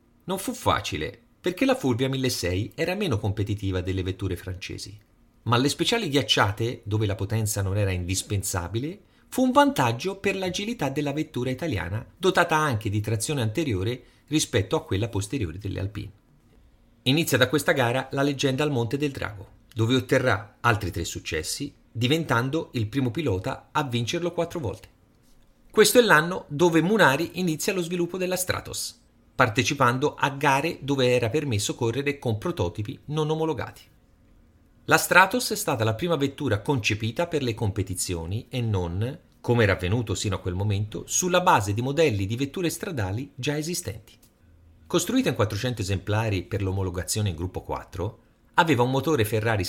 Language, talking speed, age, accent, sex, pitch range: Italian, 155 wpm, 40-59, native, male, 105-155 Hz